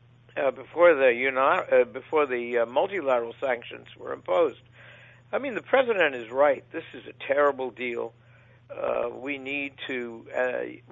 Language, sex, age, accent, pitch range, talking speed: English, male, 60-79, American, 120-150 Hz, 160 wpm